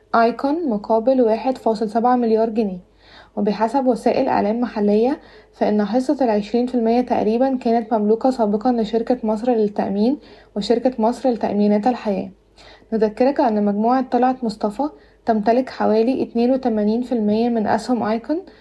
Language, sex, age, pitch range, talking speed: Arabic, female, 20-39, 215-250 Hz, 115 wpm